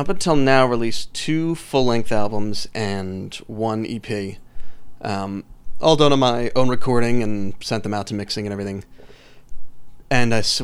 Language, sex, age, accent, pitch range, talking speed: English, male, 30-49, American, 105-125 Hz, 160 wpm